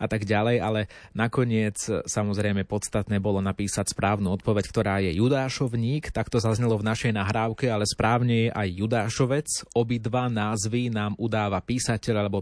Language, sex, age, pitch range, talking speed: Slovak, male, 30-49, 100-115 Hz, 150 wpm